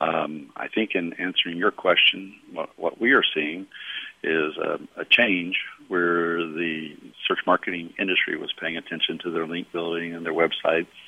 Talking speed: 170 wpm